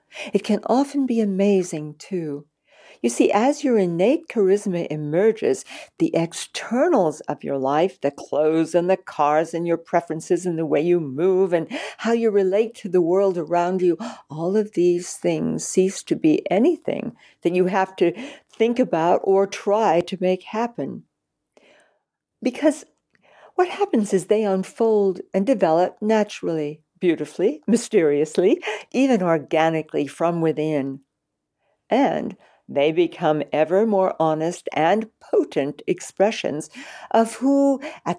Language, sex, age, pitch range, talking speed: English, female, 60-79, 160-215 Hz, 135 wpm